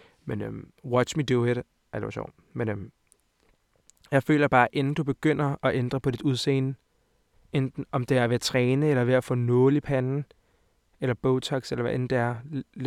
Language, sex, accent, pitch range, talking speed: Danish, male, native, 115-135 Hz, 190 wpm